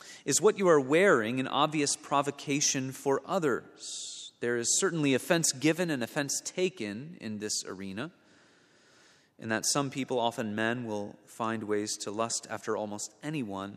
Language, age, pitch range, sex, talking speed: English, 30-49, 115-145 Hz, male, 155 wpm